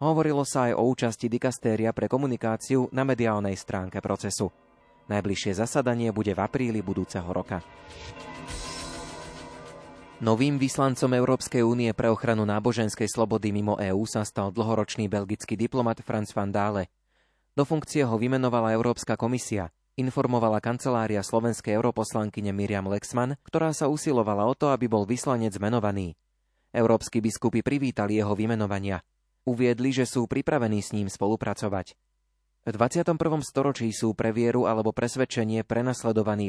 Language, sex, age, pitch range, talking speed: Slovak, male, 30-49, 100-125 Hz, 130 wpm